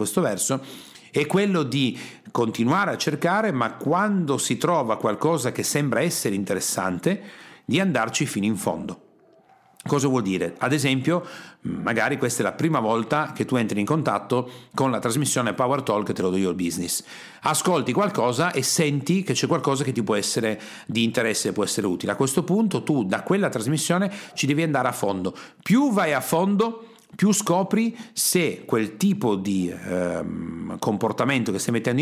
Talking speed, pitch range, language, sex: 170 wpm, 115-170 Hz, Italian, male